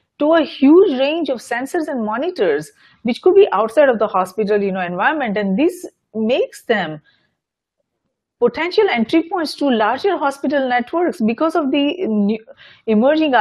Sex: female